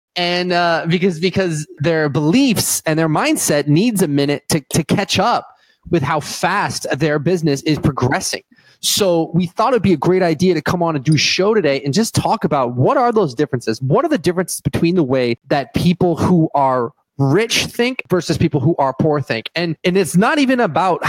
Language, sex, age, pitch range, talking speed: English, male, 30-49, 145-180 Hz, 205 wpm